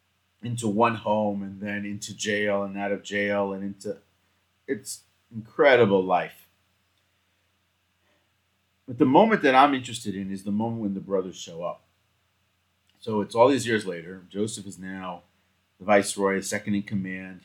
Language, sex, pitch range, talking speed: English, male, 95-110 Hz, 155 wpm